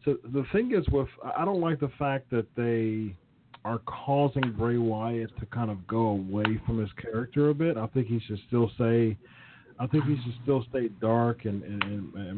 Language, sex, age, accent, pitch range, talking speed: English, male, 40-59, American, 115-135 Hz, 210 wpm